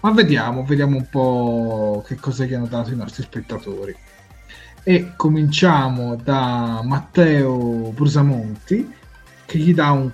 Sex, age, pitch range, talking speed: male, 30-49, 115-150 Hz, 130 wpm